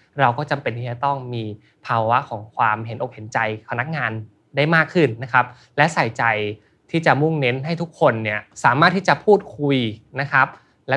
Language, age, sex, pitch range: Thai, 20-39, male, 115-155 Hz